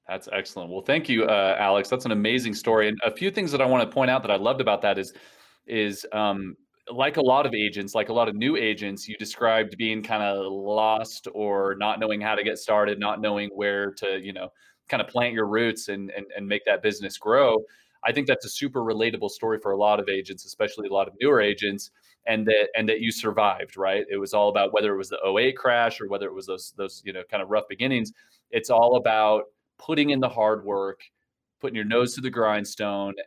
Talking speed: 240 wpm